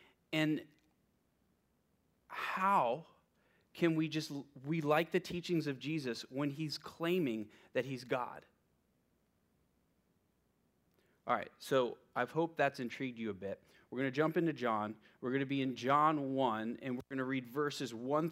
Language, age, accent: English, 30-49, American